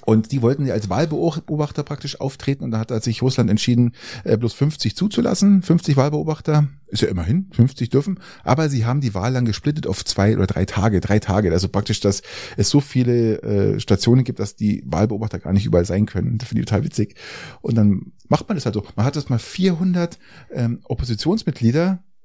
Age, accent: 30-49, German